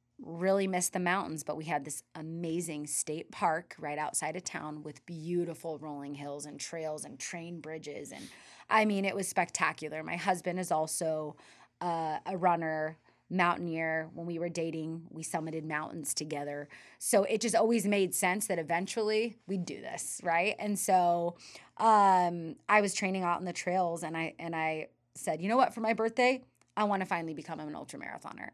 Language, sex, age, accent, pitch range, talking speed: English, female, 20-39, American, 165-195 Hz, 180 wpm